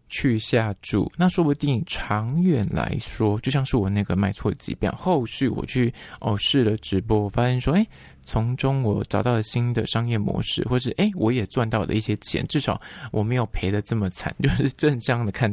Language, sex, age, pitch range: Chinese, male, 20-39, 105-140 Hz